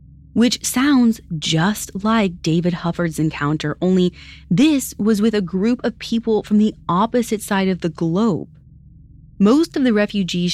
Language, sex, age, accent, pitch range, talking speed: English, female, 30-49, American, 160-230 Hz, 150 wpm